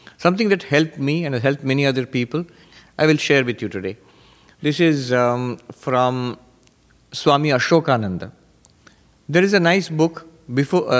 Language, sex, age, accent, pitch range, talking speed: English, male, 50-69, Indian, 120-165 Hz, 160 wpm